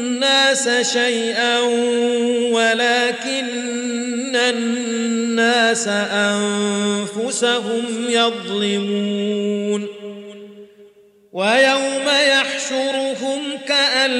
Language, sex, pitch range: Arabic, male, 230-245 Hz